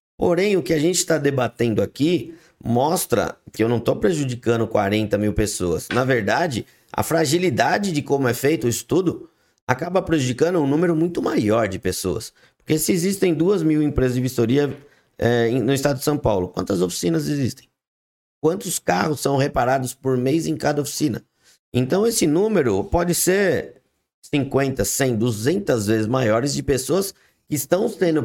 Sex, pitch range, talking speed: male, 120-155 Hz, 160 wpm